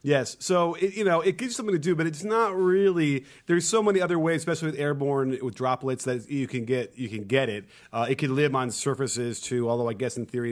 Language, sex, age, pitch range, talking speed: English, male, 40-59, 125-160 Hz, 250 wpm